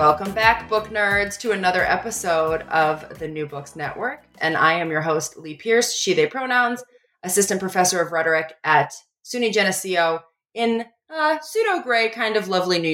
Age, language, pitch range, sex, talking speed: 20-39, English, 170-235 Hz, female, 170 wpm